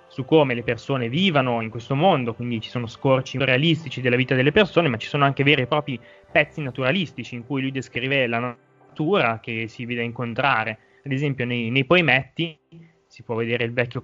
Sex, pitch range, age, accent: male, 120-150 Hz, 20-39, native